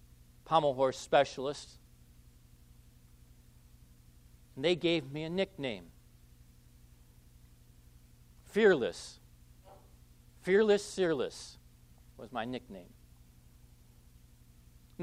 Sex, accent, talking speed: male, American, 65 wpm